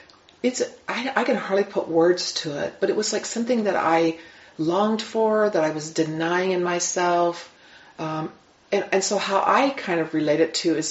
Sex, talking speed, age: female, 200 wpm, 40-59